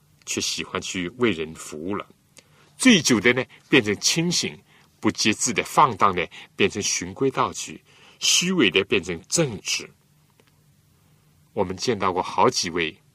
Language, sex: Chinese, male